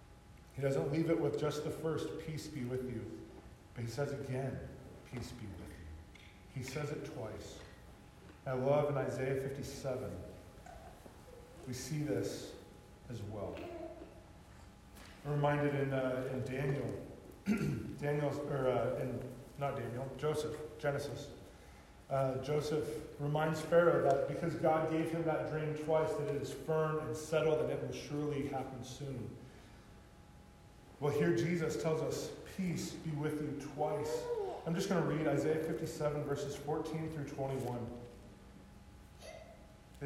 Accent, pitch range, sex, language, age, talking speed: American, 130-160 Hz, male, English, 40-59, 135 wpm